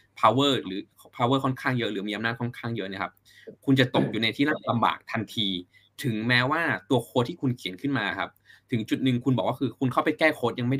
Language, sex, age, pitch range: Thai, male, 20-39, 110-135 Hz